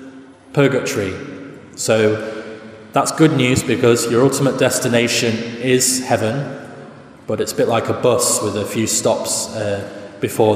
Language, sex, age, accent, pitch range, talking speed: English, male, 20-39, British, 110-140 Hz, 135 wpm